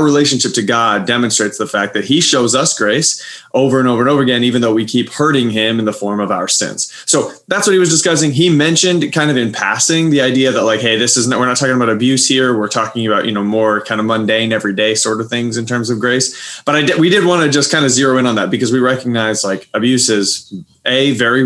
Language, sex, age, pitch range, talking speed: English, male, 20-39, 110-135 Hz, 260 wpm